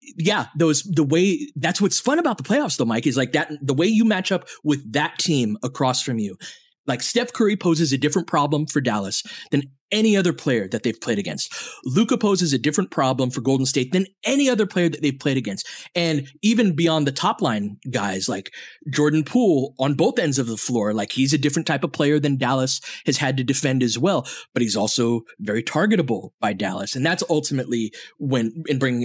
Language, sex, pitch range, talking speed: English, male, 125-165 Hz, 215 wpm